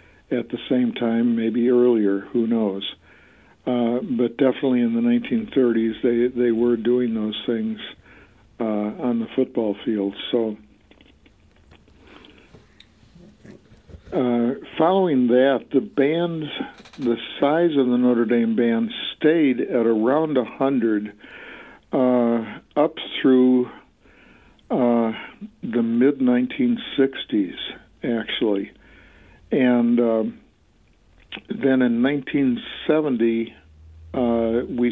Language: English